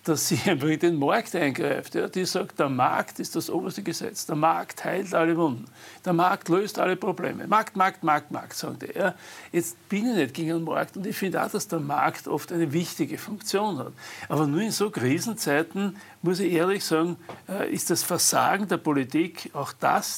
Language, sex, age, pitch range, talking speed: German, male, 60-79, 155-185 Hz, 195 wpm